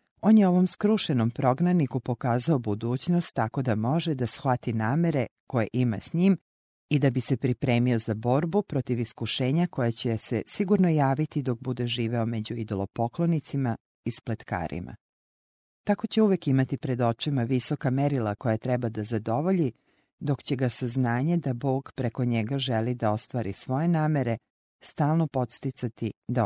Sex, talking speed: female, 150 wpm